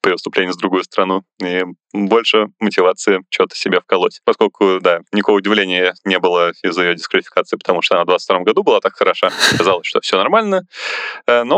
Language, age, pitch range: Russian, 20-39, 95-115 Hz